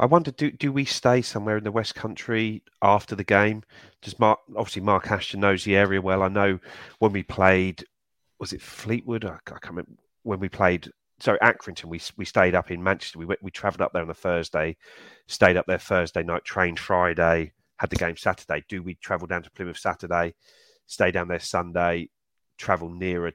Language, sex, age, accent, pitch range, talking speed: English, male, 30-49, British, 85-100 Hz, 200 wpm